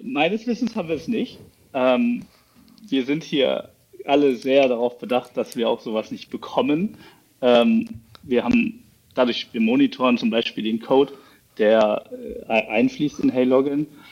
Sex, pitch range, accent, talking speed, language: male, 115-150 Hz, German, 135 wpm, German